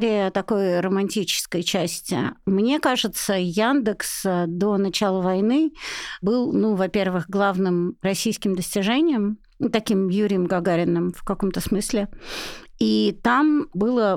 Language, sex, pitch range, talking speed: Russian, female, 185-225 Hz, 100 wpm